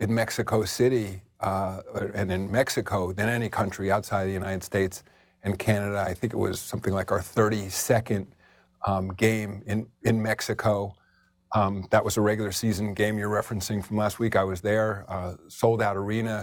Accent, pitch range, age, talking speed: American, 95-110 Hz, 50-69, 180 wpm